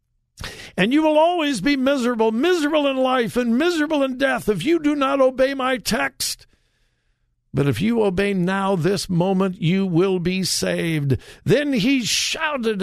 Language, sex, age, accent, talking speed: English, male, 60-79, American, 160 wpm